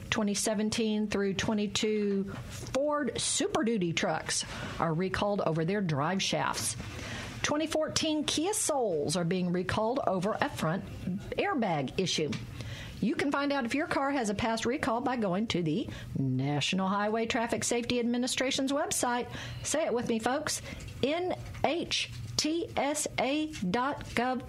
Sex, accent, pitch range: female, American, 180-270 Hz